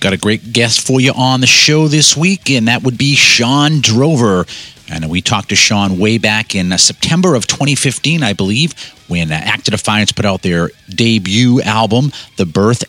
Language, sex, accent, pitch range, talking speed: English, male, American, 105-140 Hz, 195 wpm